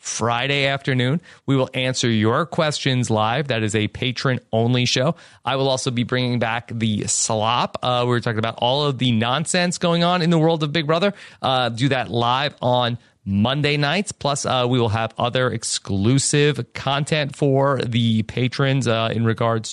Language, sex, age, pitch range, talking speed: English, male, 30-49, 115-140 Hz, 180 wpm